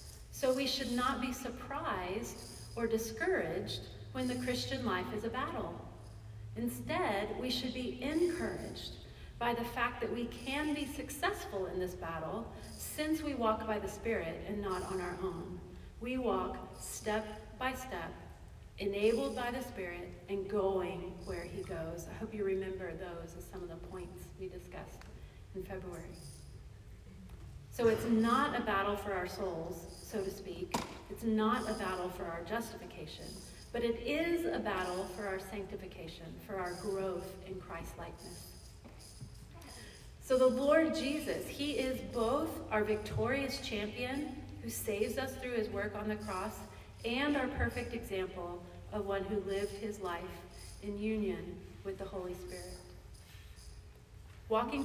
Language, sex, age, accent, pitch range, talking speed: English, female, 40-59, American, 180-235 Hz, 150 wpm